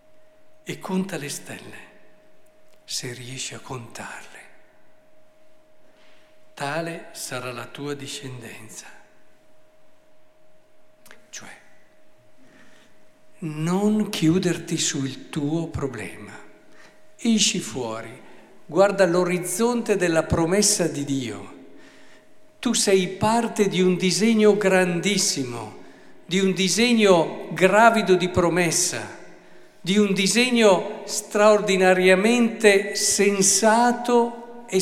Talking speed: 80 wpm